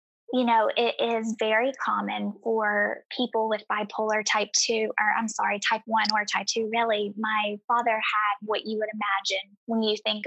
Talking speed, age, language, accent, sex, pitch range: 180 wpm, 10-29, English, American, female, 210-235 Hz